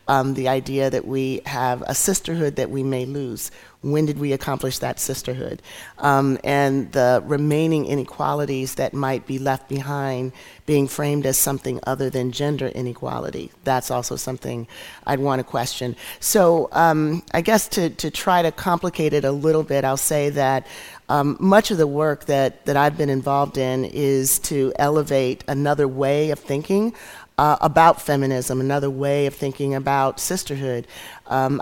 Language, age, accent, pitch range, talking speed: English, 40-59, American, 130-150 Hz, 165 wpm